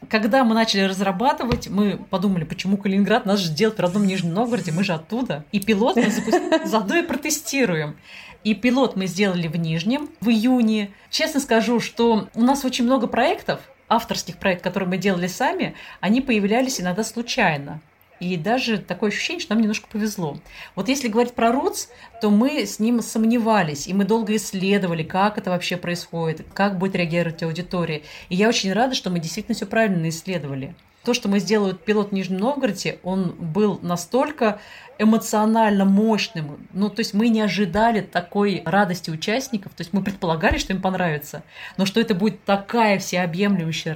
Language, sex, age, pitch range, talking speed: Russian, female, 30-49, 180-230 Hz, 170 wpm